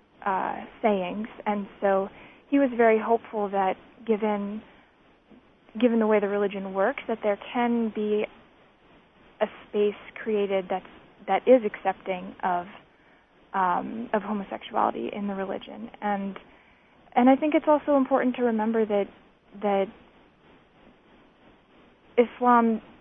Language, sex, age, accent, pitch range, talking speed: English, female, 30-49, American, 200-225 Hz, 120 wpm